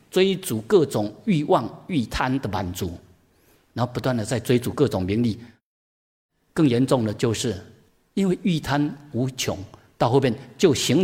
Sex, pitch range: male, 105-145 Hz